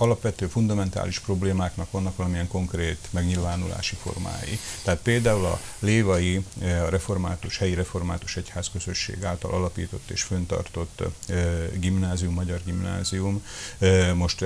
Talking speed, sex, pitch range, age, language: 105 wpm, male, 85-95 Hz, 50-69, Hungarian